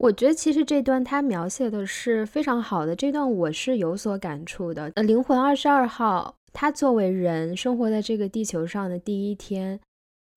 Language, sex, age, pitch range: Chinese, female, 10-29, 185-260 Hz